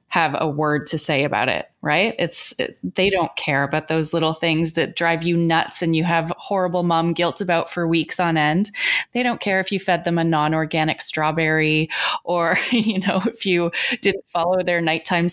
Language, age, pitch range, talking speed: English, 20-39, 155-180 Hz, 195 wpm